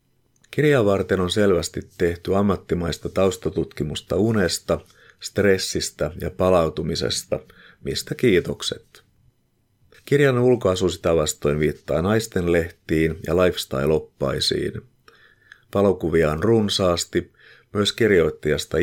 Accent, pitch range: native, 80-105 Hz